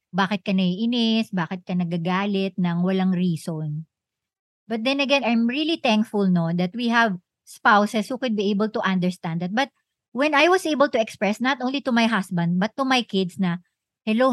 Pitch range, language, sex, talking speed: 195-255 Hz, Filipino, male, 190 wpm